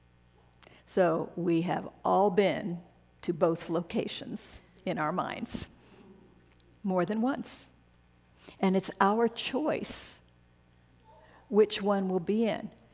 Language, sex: English, female